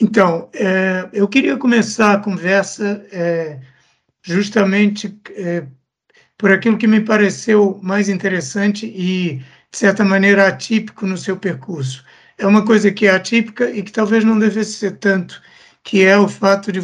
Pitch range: 175-210 Hz